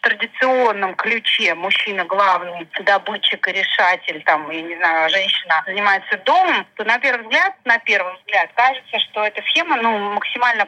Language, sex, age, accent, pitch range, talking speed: Russian, female, 30-49, native, 195-235 Hz, 150 wpm